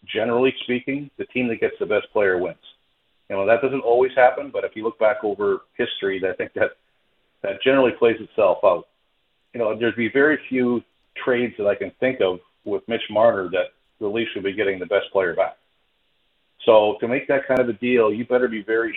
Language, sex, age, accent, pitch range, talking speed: English, male, 40-59, American, 105-130 Hz, 215 wpm